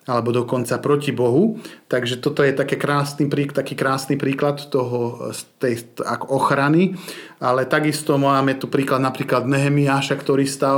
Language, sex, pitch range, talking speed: Slovak, male, 130-150 Hz, 115 wpm